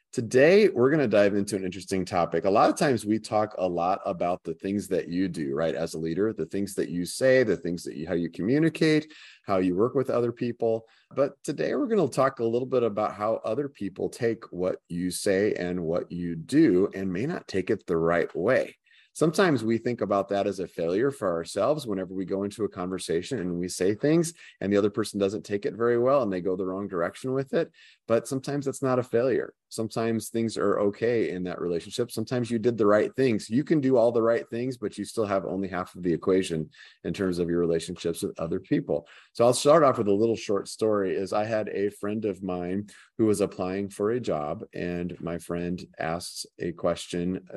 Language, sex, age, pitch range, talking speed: English, male, 30-49, 90-115 Hz, 230 wpm